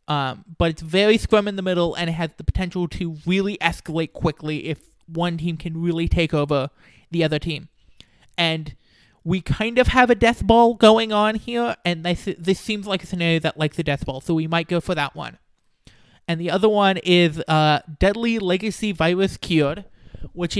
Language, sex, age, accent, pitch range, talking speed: English, male, 30-49, American, 160-190 Hz, 200 wpm